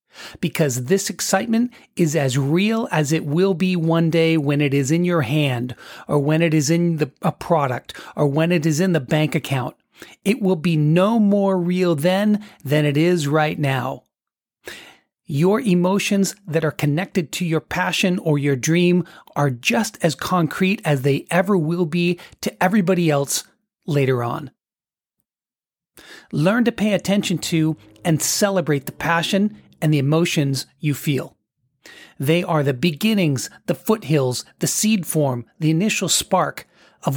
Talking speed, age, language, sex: 160 wpm, 40-59, English, male